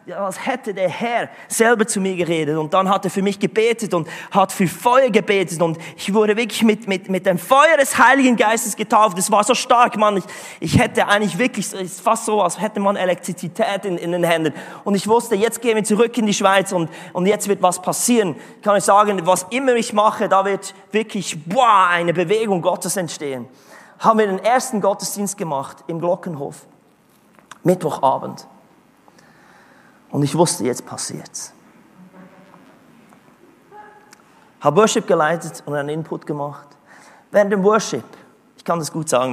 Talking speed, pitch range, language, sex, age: 175 wpm, 175-225 Hz, German, male, 30-49